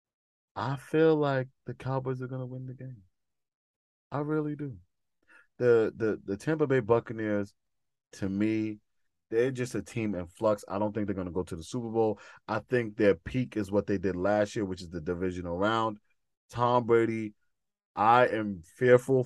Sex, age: male, 20-39